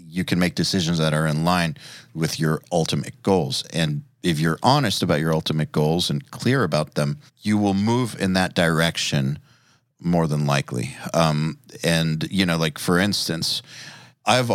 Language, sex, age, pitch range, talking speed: English, male, 40-59, 75-90 Hz, 170 wpm